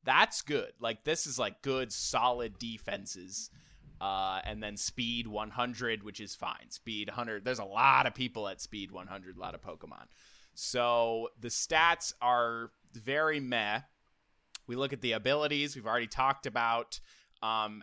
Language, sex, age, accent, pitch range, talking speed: English, male, 20-39, American, 110-140 Hz, 160 wpm